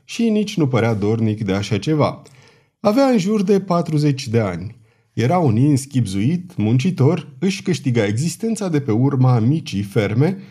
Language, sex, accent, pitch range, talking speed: Romanian, male, native, 115-170 Hz, 155 wpm